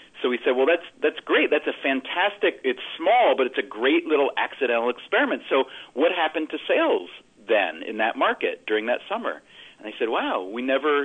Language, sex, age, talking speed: English, male, 40-59, 200 wpm